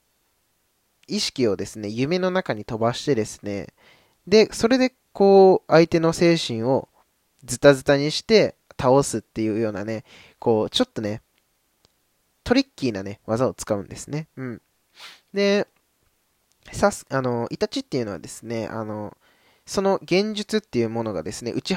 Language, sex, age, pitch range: Japanese, male, 20-39, 110-160 Hz